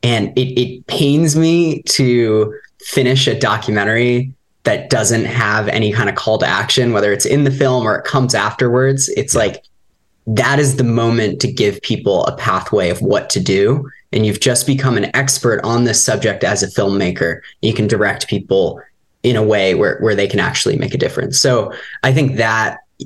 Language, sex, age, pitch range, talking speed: English, male, 20-39, 110-135 Hz, 190 wpm